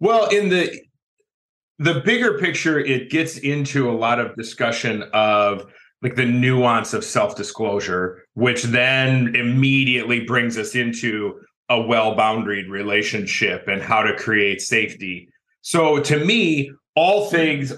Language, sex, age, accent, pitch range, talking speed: English, male, 30-49, American, 115-150 Hz, 130 wpm